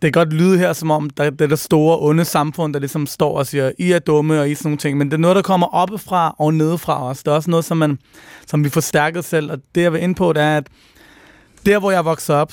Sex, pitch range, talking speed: male, 145-170 Hz, 290 wpm